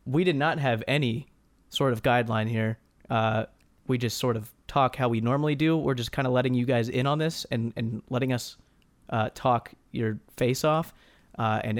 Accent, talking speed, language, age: American, 205 wpm, English, 30-49